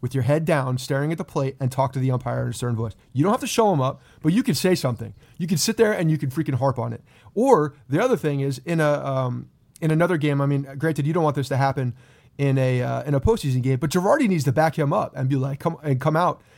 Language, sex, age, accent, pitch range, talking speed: English, male, 30-49, American, 130-160 Hz, 295 wpm